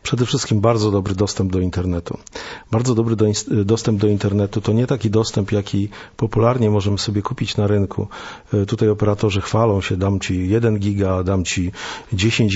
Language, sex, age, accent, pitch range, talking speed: Polish, male, 50-69, native, 105-120 Hz, 165 wpm